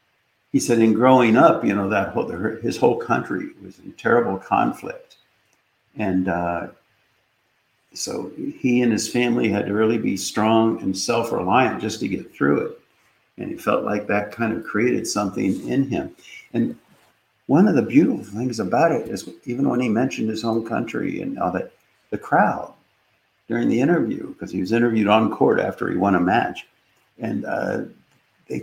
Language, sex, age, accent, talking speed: English, male, 60-79, American, 175 wpm